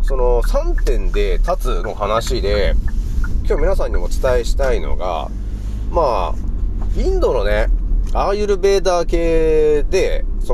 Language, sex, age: Japanese, male, 30-49